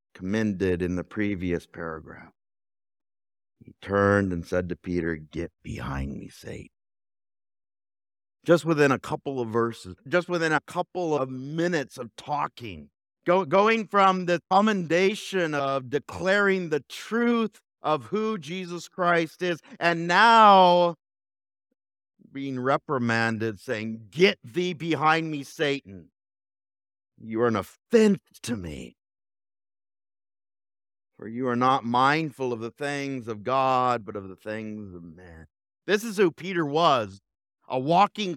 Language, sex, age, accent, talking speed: English, male, 50-69, American, 125 wpm